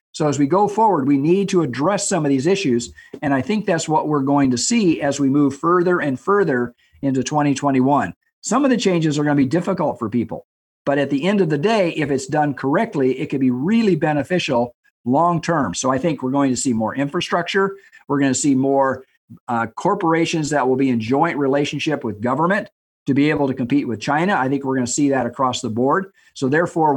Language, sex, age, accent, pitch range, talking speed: English, male, 50-69, American, 130-165 Hz, 225 wpm